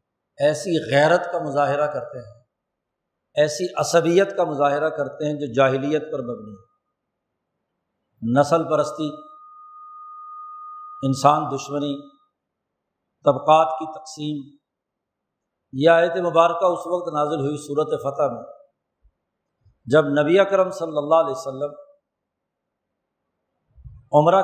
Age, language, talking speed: 50-69, Urdu, 105 wpm